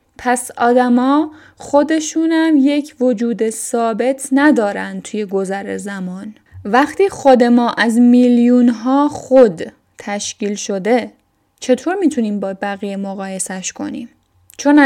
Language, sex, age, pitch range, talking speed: Persian, female, 10-29, 215-255 Hz, 110 wpm